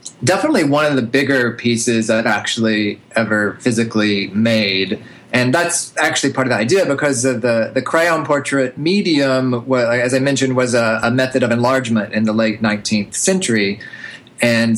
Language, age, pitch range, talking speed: English, 30-49, 105-130 Hz, 160 wpm